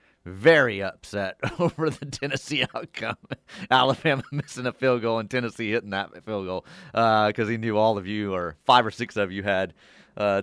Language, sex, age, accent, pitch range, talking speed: English, male, 30-49, American, 110-155 Hz, 185 wpm